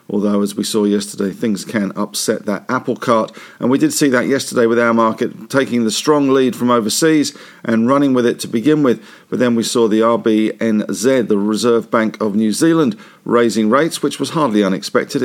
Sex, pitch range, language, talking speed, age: male, 105-130 Hz, English, 200 wpm, 50-69